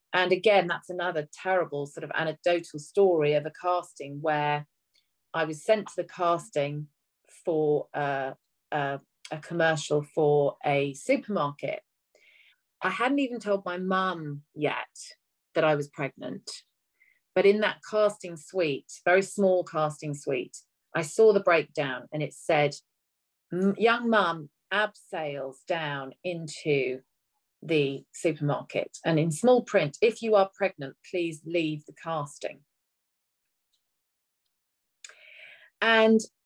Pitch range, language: 150-210 Hz, English